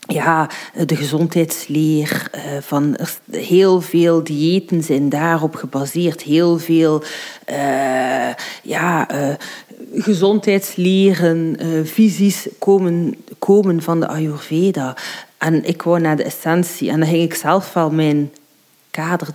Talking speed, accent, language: 115 wpm, Dutch, Dutch